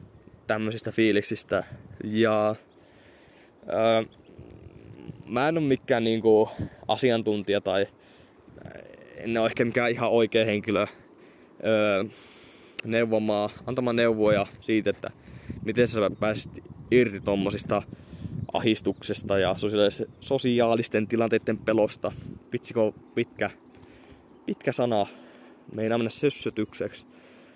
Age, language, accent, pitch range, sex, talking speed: 20-39, Finnish, native, 110-125 Hz, male, 90 wpm